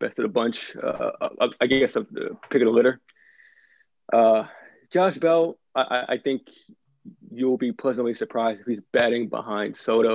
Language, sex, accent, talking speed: English, male, American, 170 wpm